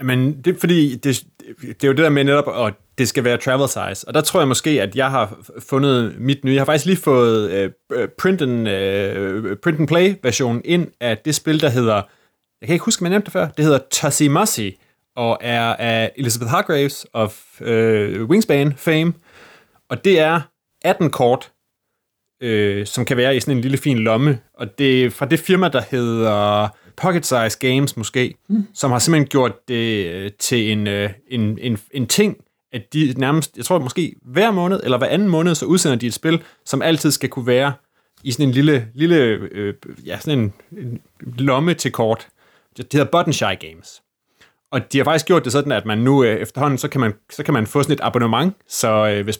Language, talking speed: Danish, 205 wpm